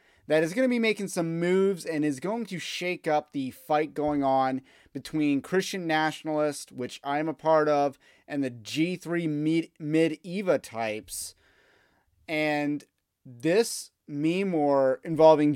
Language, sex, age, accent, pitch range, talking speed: English, male, 30-49, American, 135-170 Hz, 140 wpm